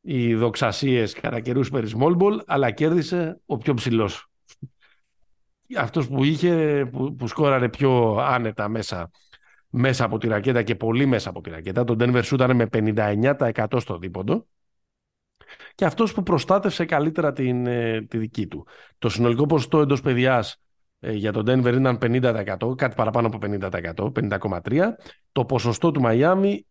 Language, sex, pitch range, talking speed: Greek, male, 115-145 Hz, 140 wpm